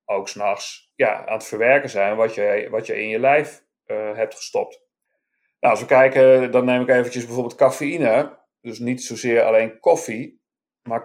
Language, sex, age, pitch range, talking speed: Dutch, male, 40-59, 110-145 Hz, 180 wpm